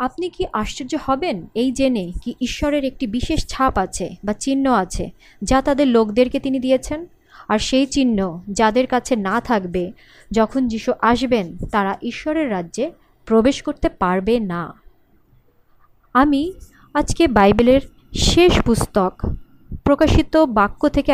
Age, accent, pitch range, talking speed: 30-49, native, 210-275 Hz, 130 wpm